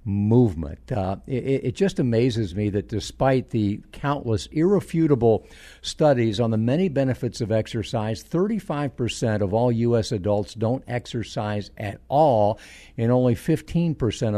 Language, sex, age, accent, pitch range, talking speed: English, male, 50-69, American, 105-130 Hz, 130 wpm